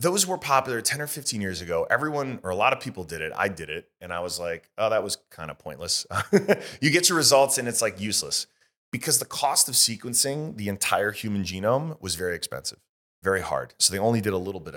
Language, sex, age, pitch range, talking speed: English, male, 30-49, 85-120 Hz, 235 wpm